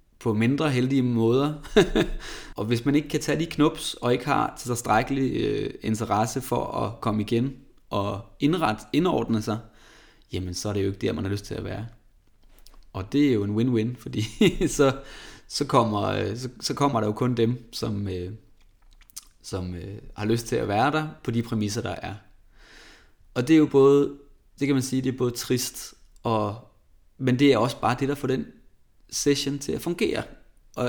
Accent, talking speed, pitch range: native, 195 wpm, 105-135 Hz